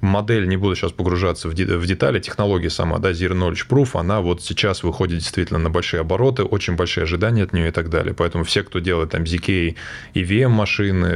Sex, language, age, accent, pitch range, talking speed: male, Russian, 20-39, native, 85-105 Hz, 195 wpm